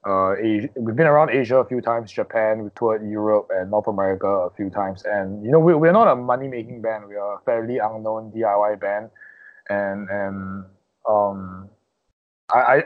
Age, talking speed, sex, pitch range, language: 20-39, 175 wpm, male, 105-125 Hz, English